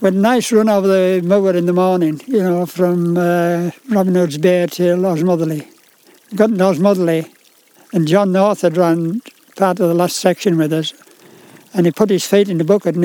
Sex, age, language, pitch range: male, 60-79, English, 170-195 Hz